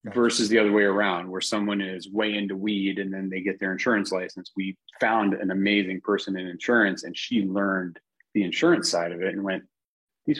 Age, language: 30-49, English